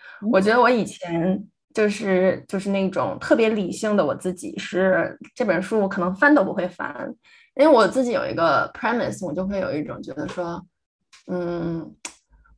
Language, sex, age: Chinese, female, 20-39